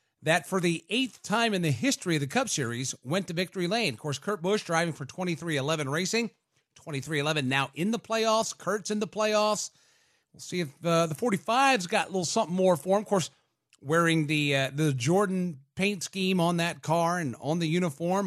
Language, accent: English, American